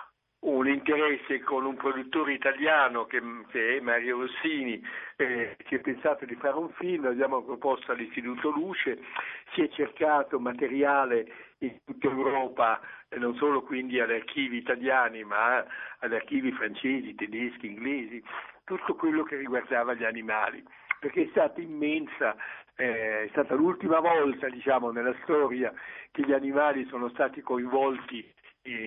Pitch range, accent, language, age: 125-145 Hz, native, Italian, 60-79